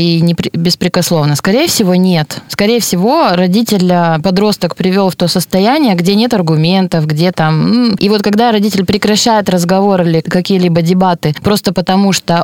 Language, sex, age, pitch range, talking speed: Russian, female, 20-39, 170-205 Hz, 145 wpm